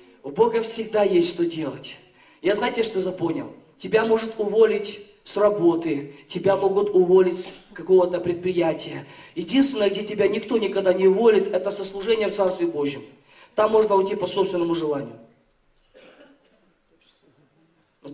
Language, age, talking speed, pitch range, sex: Russian, 20-39, 135 wpm, 180-260 Hz, male